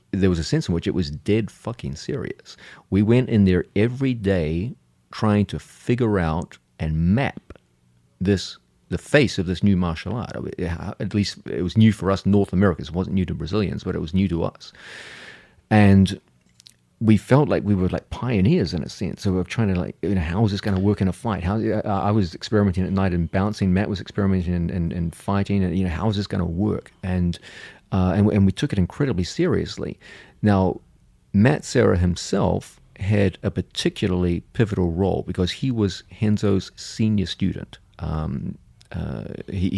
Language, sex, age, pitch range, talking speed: English, male, 40-59, 90-105 Hz, 190 wpm